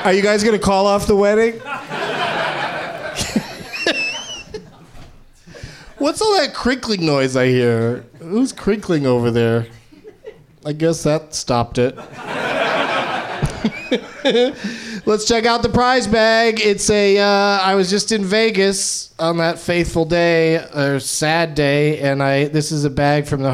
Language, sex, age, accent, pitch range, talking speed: English, male, 40-59, American, 145-210 Hz, 140 wpm